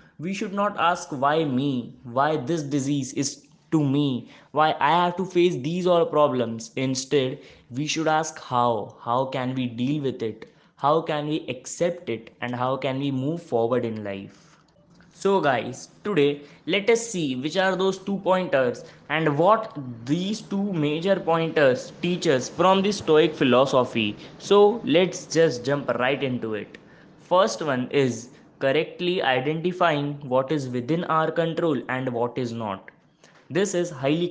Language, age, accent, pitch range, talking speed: English, 20-39, Indian, 130-170 Hz, 160 wpm